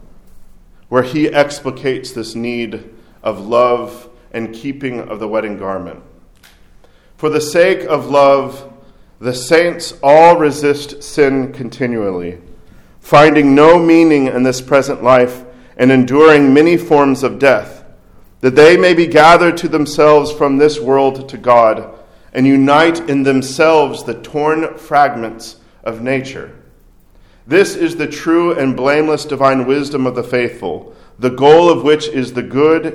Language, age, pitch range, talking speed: English, 40-59, 125-155 Hz, 140 wpm